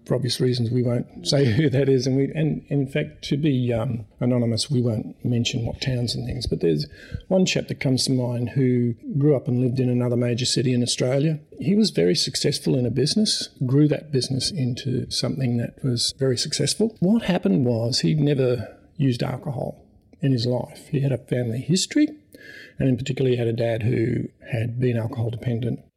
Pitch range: 120-140 Hz